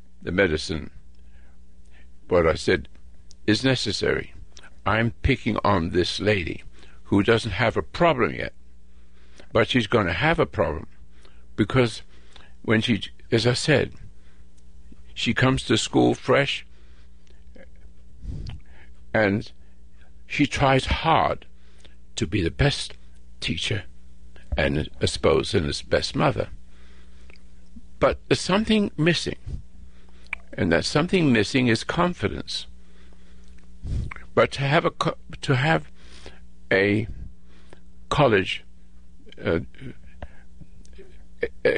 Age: 60-79